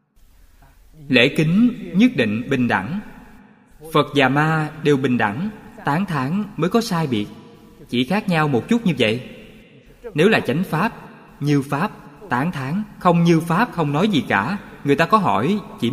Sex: male